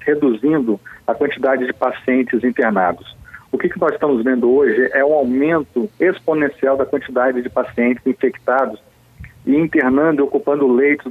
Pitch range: 130-170 Hz